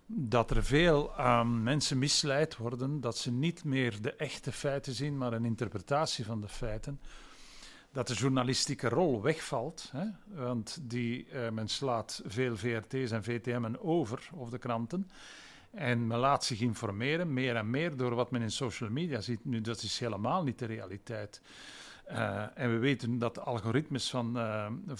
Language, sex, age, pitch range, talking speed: Dutch, male, 50-69, 120-145 Hz, 165 wpm